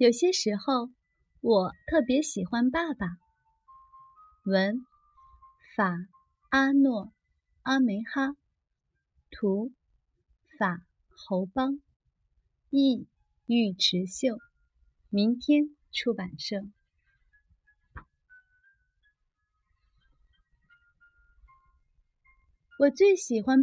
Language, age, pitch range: Chinese, 30-49, 220-355 Hz